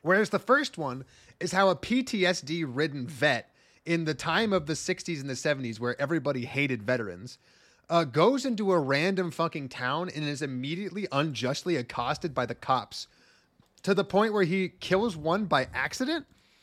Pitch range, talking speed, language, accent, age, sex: 135-195 Hz, 165 wpm, English, American, 30-49, male